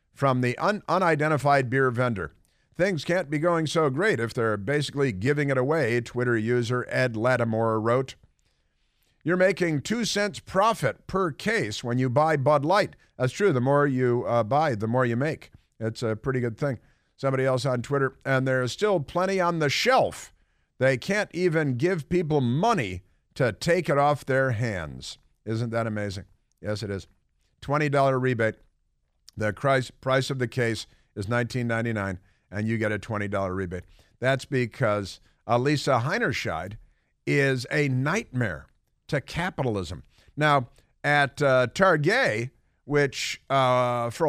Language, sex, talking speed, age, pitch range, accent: English, male, 150 wpm, 50-69, 115-145 Hz, American